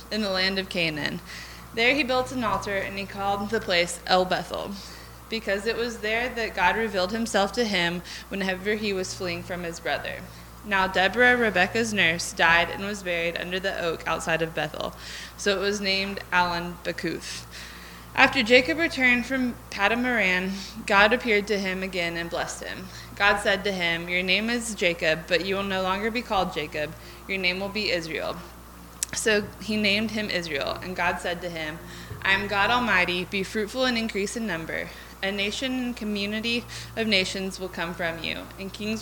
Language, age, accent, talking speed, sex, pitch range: English, 20-39, American, 185 wpm, female, 175-215 Hz